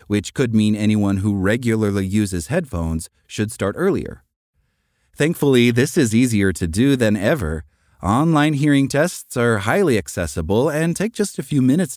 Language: English